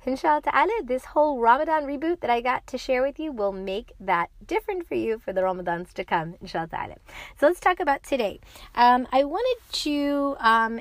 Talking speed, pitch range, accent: 200 wpm, 195-270 Hz, American